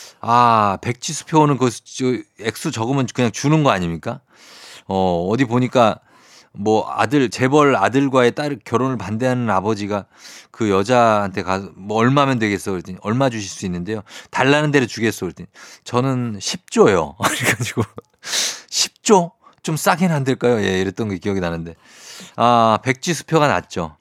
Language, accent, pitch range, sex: Korean, native, 100-135 Hz, male